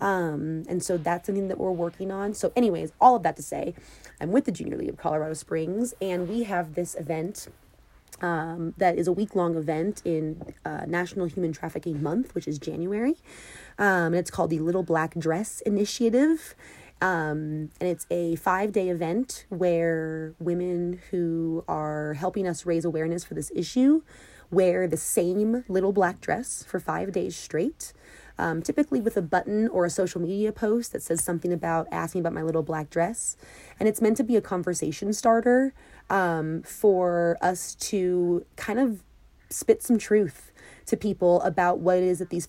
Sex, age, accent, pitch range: female, 30-49, American, 165-195 Hz